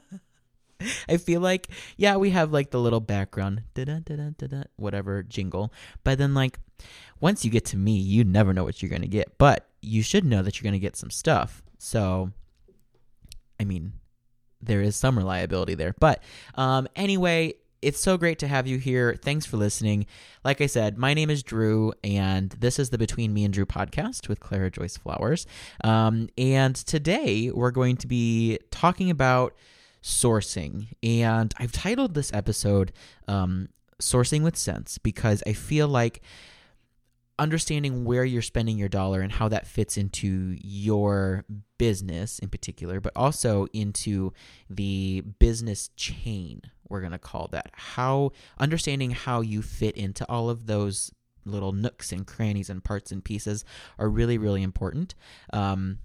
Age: 20-39